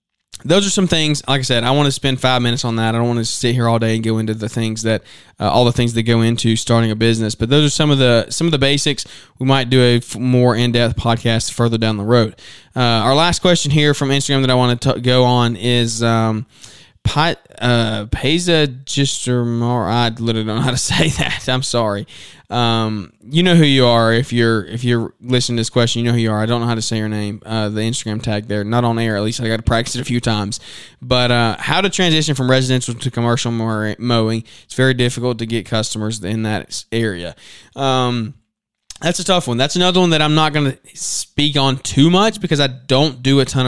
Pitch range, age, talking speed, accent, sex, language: 115-135 Hz, 20-39, 245 wpm, American, male, English